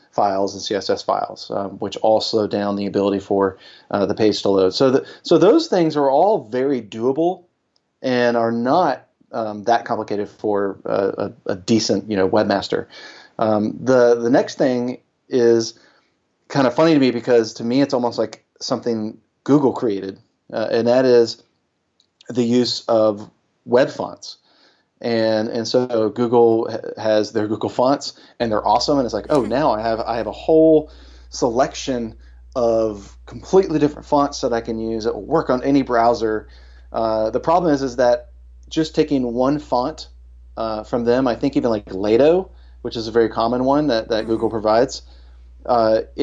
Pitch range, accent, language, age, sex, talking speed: 100-125 Hz, American, English, 30-49, male, 175 wpm